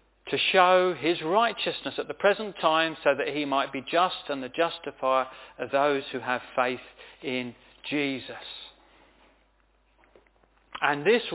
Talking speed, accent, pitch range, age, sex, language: 135 wpm, British, 150-210 Hz, 40-59, male, English